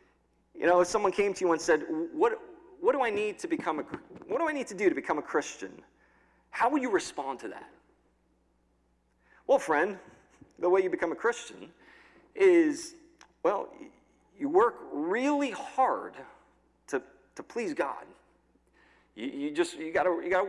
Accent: American